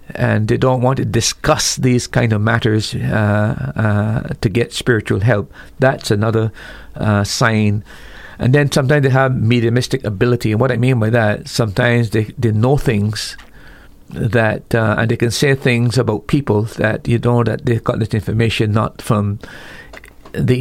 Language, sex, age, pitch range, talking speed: English, male, 50-69, 110-130 Hz, 170 wpm